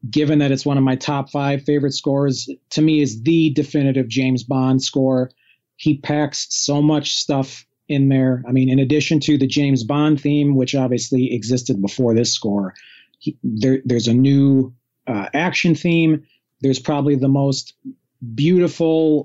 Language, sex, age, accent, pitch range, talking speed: English, male, 40-59, American, 130-150 Hz, 165 wpm